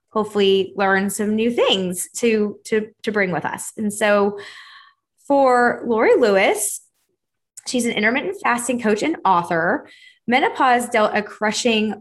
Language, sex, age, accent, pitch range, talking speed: English, female, 20-39, American, 195-240 Hz, 135 wpm